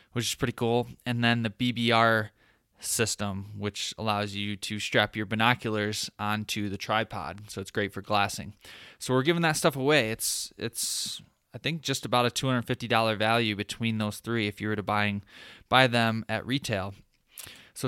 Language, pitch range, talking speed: English, 110-130 Hz, 175 wpm